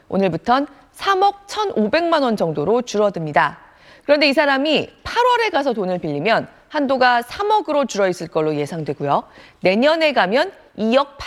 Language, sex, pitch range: Korean, female, 190-305 Hz